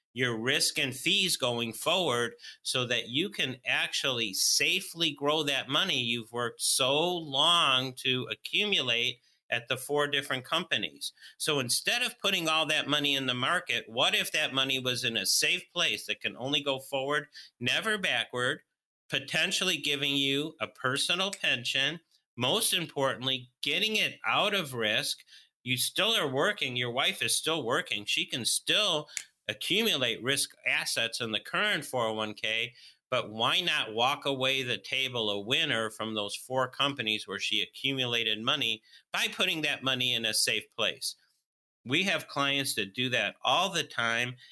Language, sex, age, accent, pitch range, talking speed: English, male, 50-69, American, 125-155 Hz, 160 wpm